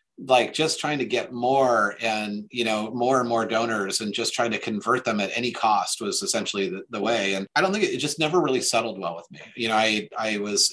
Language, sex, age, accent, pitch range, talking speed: English, male, 30-49, American, 95-115 Hz, 250 wpm